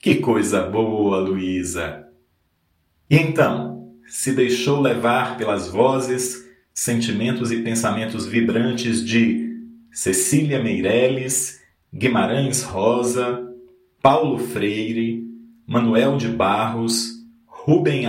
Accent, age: Brazilian, 40-59